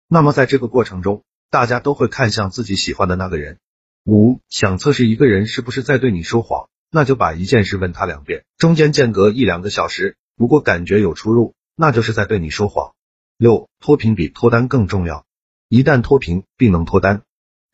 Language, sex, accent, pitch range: Chinese, male, native, 95-125 Hz